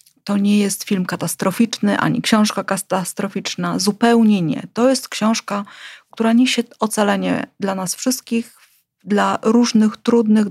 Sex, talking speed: female, 125 wpm